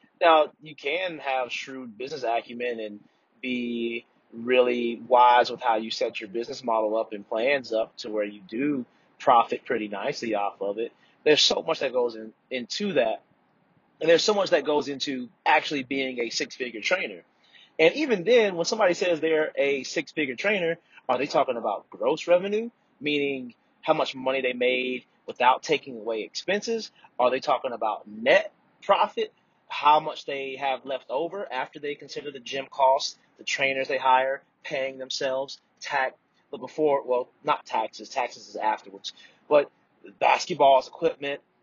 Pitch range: 125-175 Hz